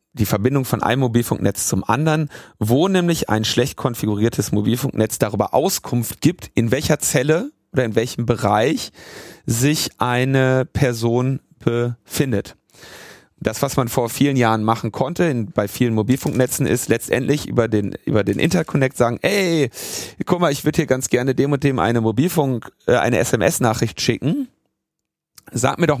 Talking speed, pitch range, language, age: 150 wpm, 110-140 Hz, German, 30-49